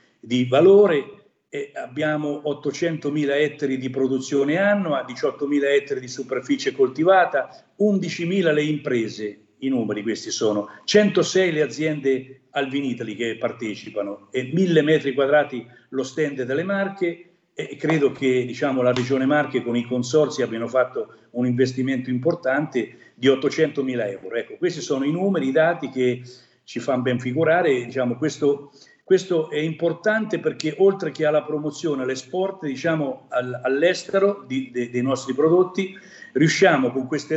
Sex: male